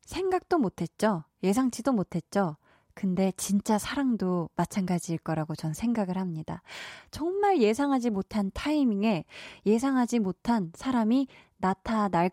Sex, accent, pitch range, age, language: female, native, 185-265 Hz, 20-39, Korean